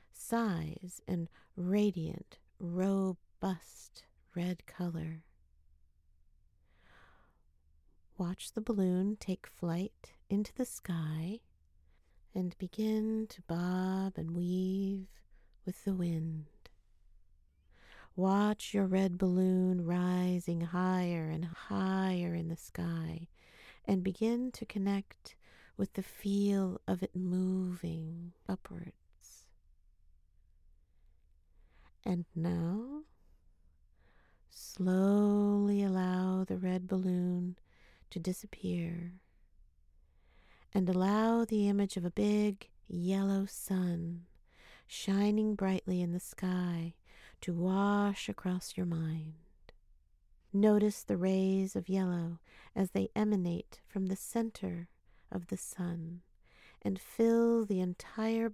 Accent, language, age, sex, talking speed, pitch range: American, English, 50-69, female, 95 wpm, 160-195 Hz